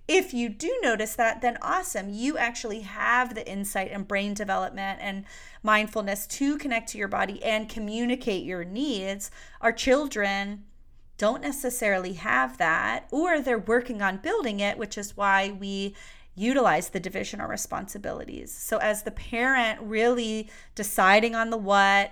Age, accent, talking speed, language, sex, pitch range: 30-49, American, 150 wpm, English, female, 200-250 Hz